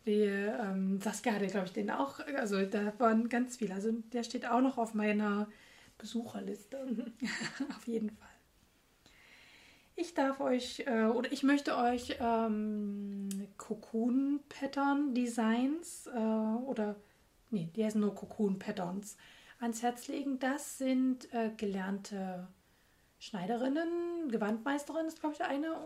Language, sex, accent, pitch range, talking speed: German, female, German, 210-255 Hz, 130 wpm